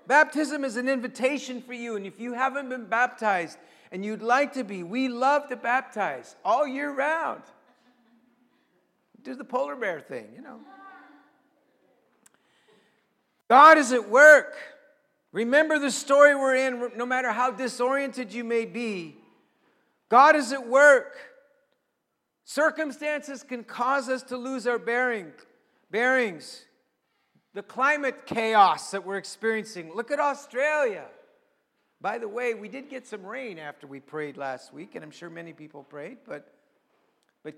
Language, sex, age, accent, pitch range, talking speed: English, male, 50-69, American, 230-295 Hz, 145 wpm